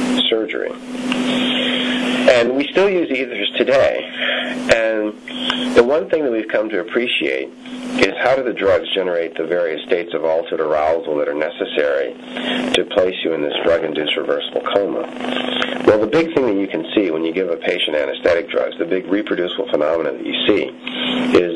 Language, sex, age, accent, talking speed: English, male, 40-59, American, 175 wpm